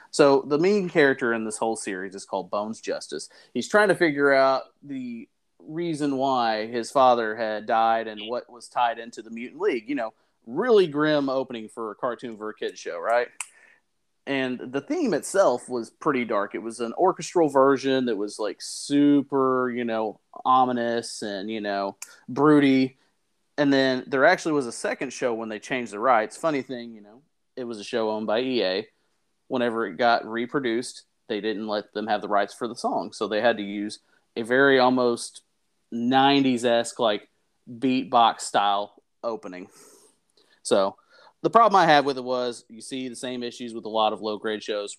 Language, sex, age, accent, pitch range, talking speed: English, male, 30-49, American, 110-140 Hz, 185 wpm